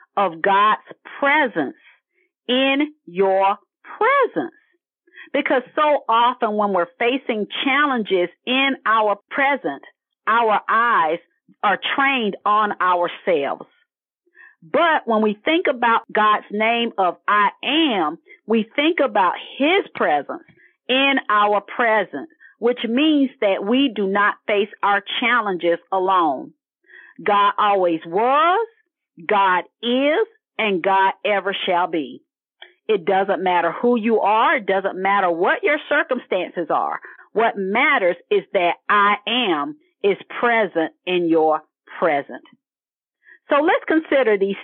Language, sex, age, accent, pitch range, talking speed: English, female, 40-59, American, 200-310 Hz, 120 wpm